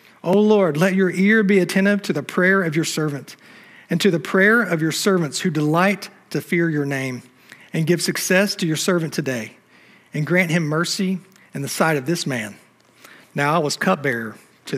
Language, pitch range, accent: English, 140-175 Hz, American